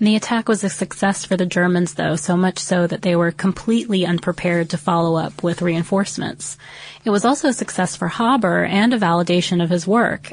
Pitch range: 170-200 Hz